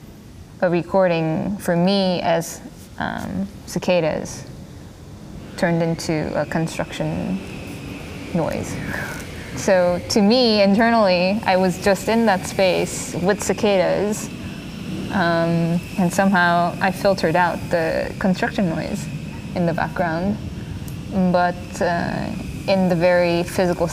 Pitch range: 170-195 Hz